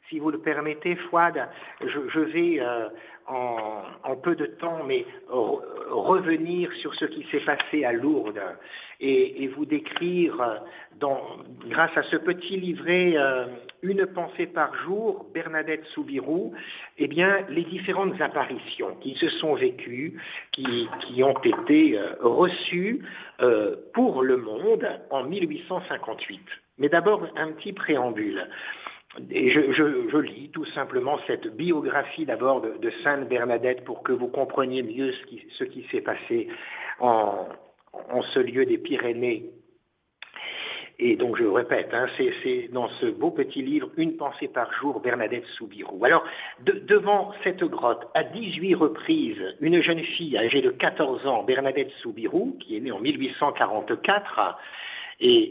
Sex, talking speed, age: male, 155 wpm, 60-79